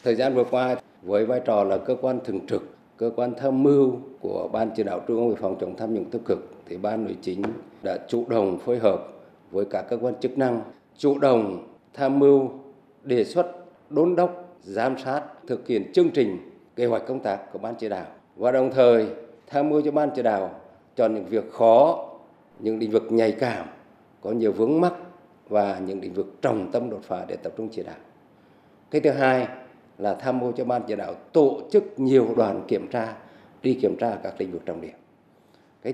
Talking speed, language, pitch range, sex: 210 wpm, Vietnamese, 120-160 Hz, male